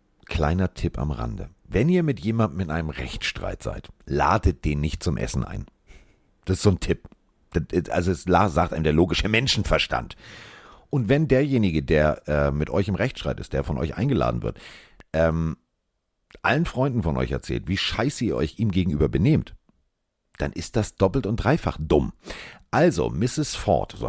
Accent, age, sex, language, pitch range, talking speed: German, 50-69, male, German, 80-110 Hz, 175 wpm